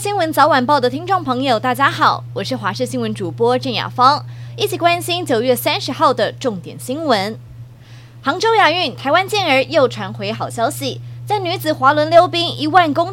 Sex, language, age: female, Chinese, 20-39